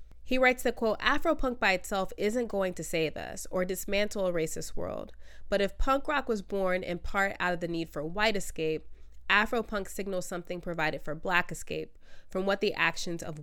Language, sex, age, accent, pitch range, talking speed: English, female, 20-39, American, 165-210 Hz, 195 wpm